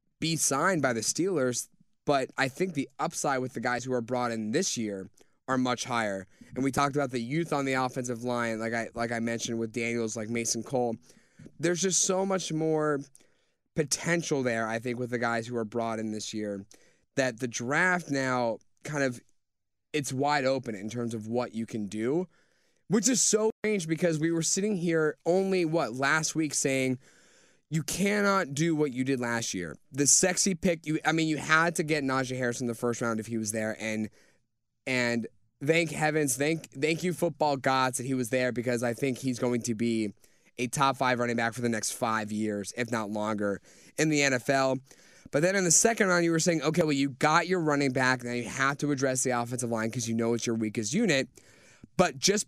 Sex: male